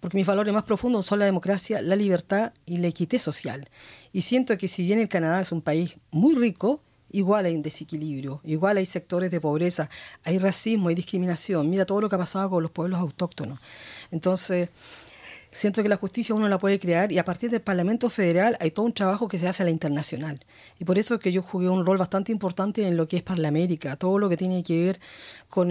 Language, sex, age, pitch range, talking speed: Spanish, female, 50-69, 170-220 Hz, 225 wpm